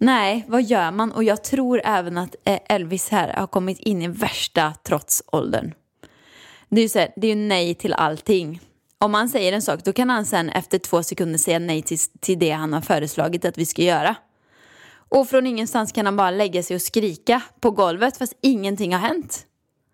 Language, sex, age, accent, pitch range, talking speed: Swedish, female, 20-39, native, 185-245 Hz, 195 wpm